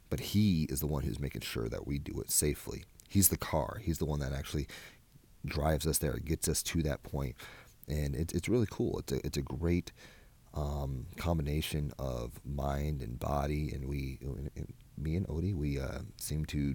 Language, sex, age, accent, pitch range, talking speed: English, male, 30-49, American, 70-95 Hz, 200 wpm